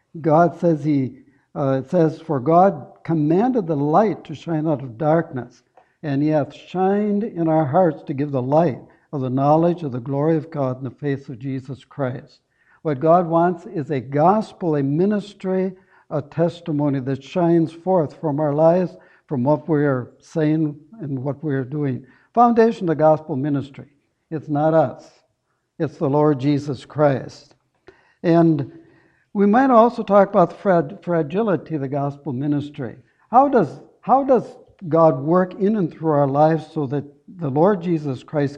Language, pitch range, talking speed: English, 145-180 Hz, 170 wpm